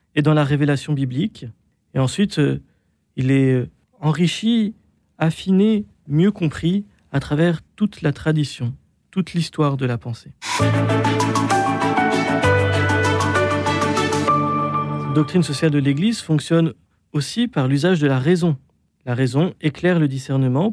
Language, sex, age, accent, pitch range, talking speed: French, male, 40-59, French, 135-180 Hz, 120 wpm